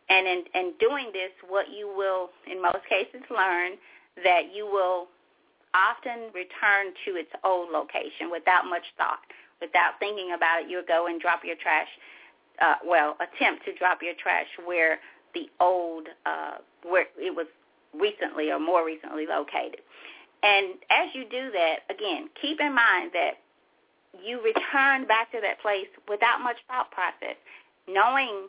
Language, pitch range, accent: English, 185-275 Hz, American